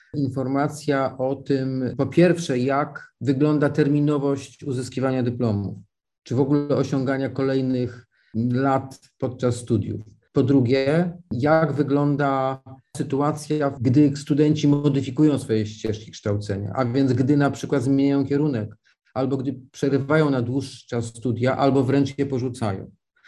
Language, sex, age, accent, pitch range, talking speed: Polish, male, 40-59, native, 125-150 Hz, 120 wpm